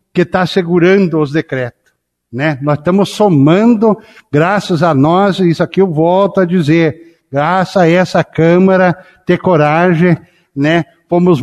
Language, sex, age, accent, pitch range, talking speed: Portuguese, male, 60-79, Brazilian, 150-185 Hz, 140 wpm